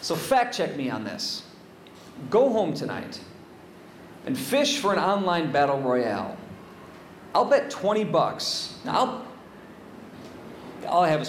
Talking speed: 140 wpm